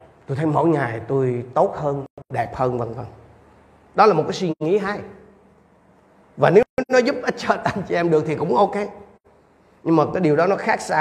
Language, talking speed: Vietnamese, 215 wpm